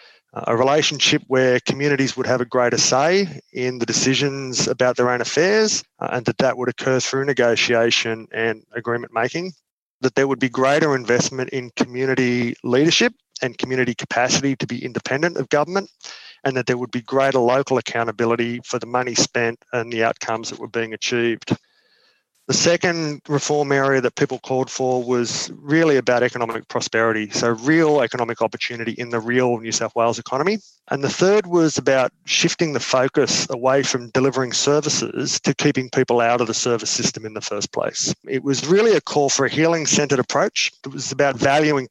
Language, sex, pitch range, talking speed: English, male, 120-145 Hz, 175 wpm